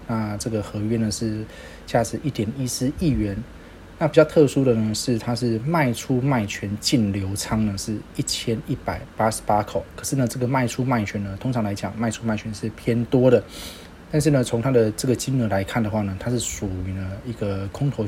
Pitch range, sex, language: 100-125 Hz, male, Chinese